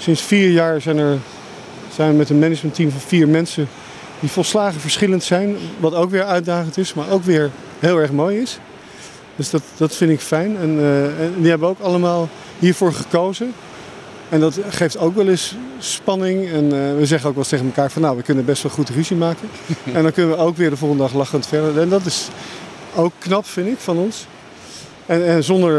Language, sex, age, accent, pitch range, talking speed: Dutch, male, 50-69, Dutch, 140-170 Hz, 210 wpm